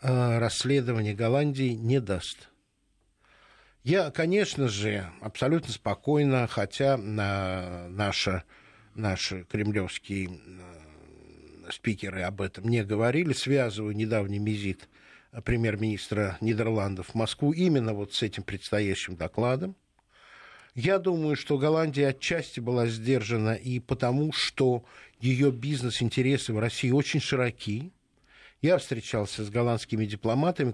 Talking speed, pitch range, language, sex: 100 wpm, 110-145 Hz, Russian, male